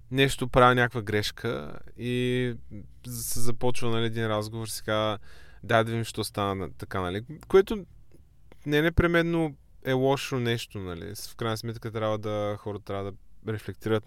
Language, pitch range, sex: Bulgarian, 100-130 Hz, male